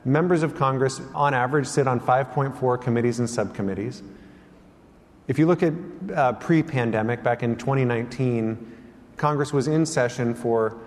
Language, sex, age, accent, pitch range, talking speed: English, male, 30-49, American, 120-155 Hz, 140 wpm